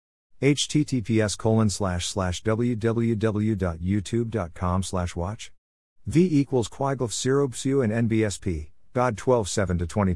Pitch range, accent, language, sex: 90-115 Hz, American, English, male